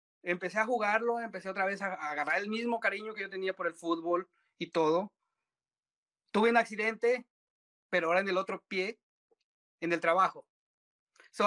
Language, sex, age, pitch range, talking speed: English, male, 30-49, 170-240 Hz, 175 wpm